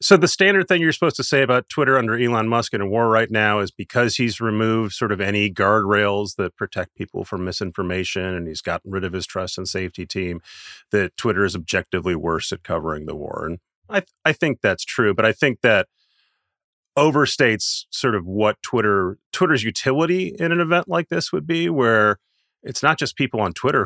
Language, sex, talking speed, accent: English, male, 205 wpm, American